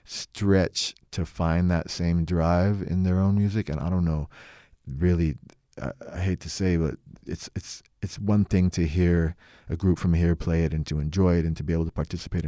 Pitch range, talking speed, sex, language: 80-90 Hz, 210 wpm, male, English